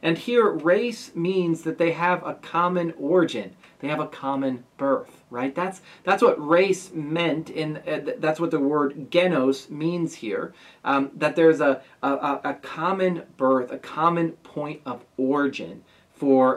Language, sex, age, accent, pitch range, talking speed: English, male, 40-59, American, 135-170 Hz, 165 wpm